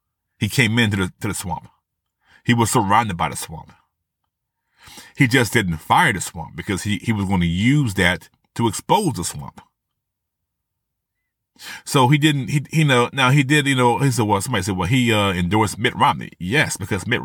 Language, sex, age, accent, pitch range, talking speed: English, male, 30-49, American, 90-120 Hz, 195 wpm